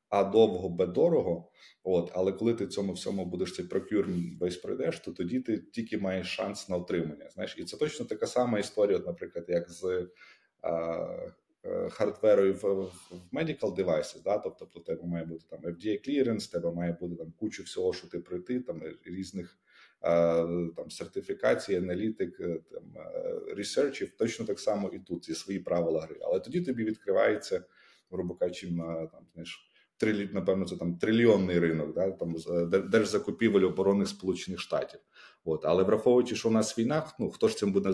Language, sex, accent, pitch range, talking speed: Ukrainian, male, native, 85-115 Hz, 165 wpm